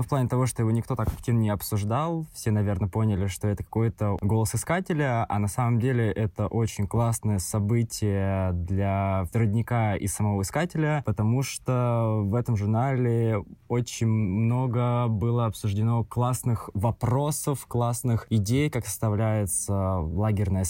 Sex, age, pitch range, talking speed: male, 20-39, 100-120 Hz, 135 wpm